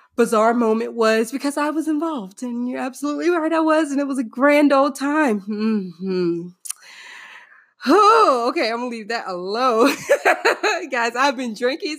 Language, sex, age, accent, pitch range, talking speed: English, female, 20-39, American, 195-280 Hz, 160 wpm